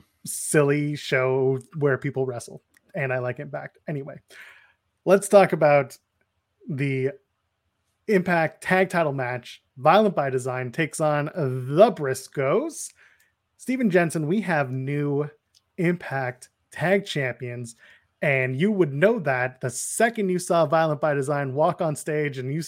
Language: English